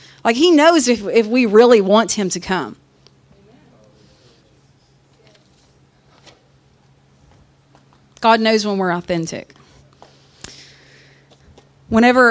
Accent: American